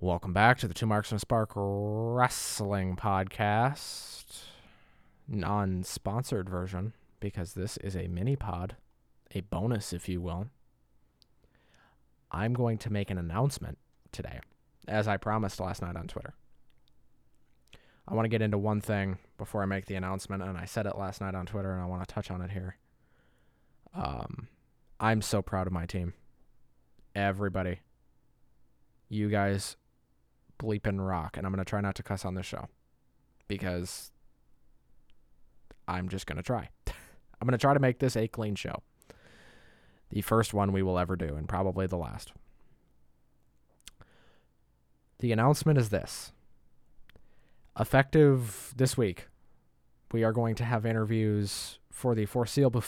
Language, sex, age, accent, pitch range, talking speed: English, male, 20-39, American, 95-115 Hz, 150 wpm